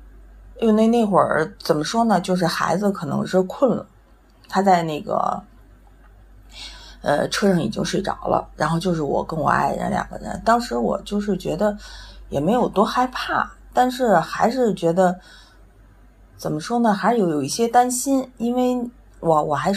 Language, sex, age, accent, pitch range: Chinese, female, 30-49, native, 165-215 Hz